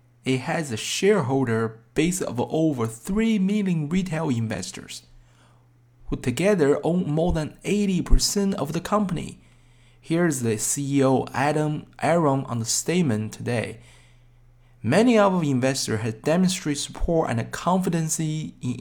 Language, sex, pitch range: Chinese, male, 120-165 Hz